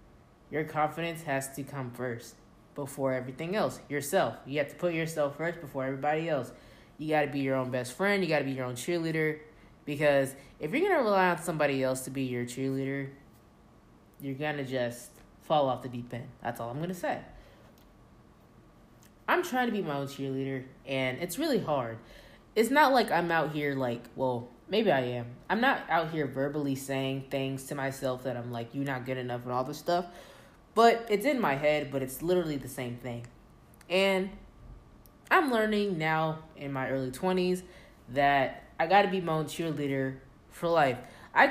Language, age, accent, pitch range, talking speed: English, 20-39, American, 130-170 Hz, 195 wpm